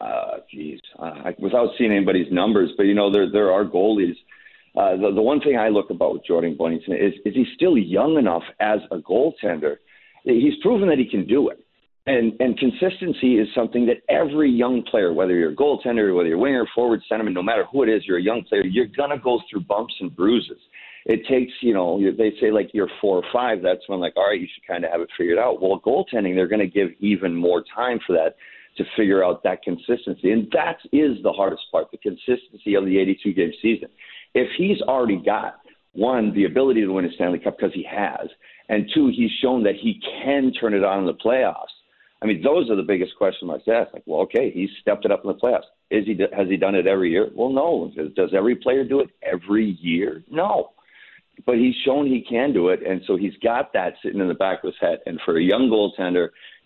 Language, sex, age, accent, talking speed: English, male, 50-69, American, 235 wpm